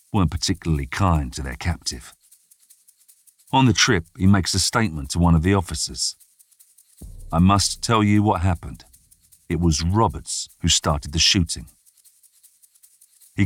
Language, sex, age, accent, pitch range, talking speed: English, male, 50-69, British, 80-95 Hz, 145 wpm